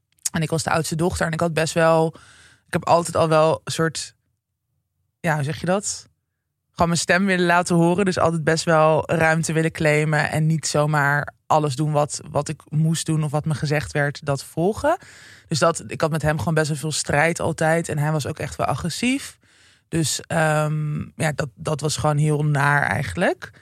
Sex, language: male, Dutch